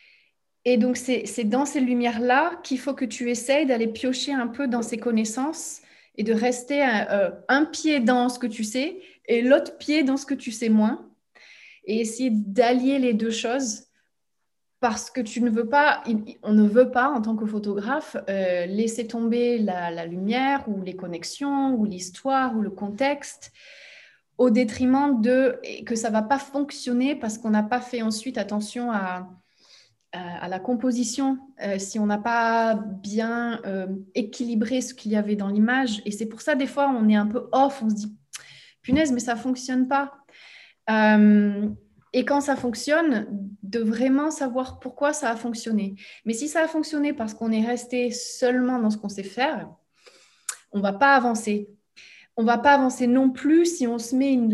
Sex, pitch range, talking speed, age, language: female, 215-270 Hz, 185 wpm, 30-49, French